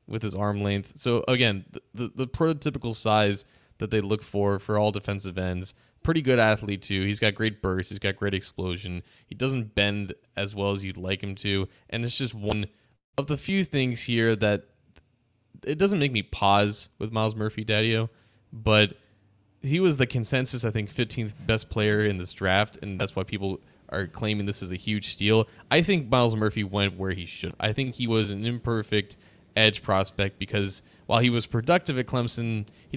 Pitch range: 100-120 Hz